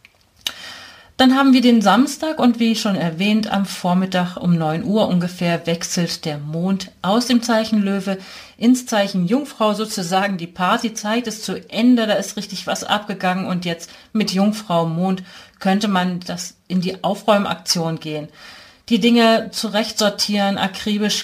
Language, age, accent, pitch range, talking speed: German, 40-59, German, 180-215 Hz, 145 wpm